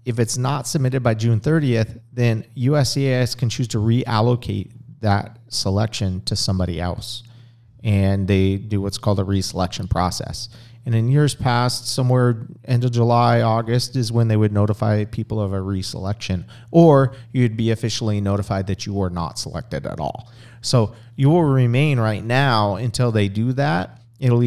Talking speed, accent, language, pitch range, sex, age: 165 wpm, American, English, 100-125 Hz, male, 40-59